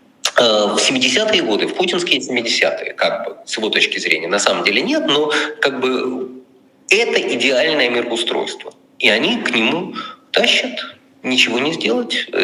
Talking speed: 145 wpm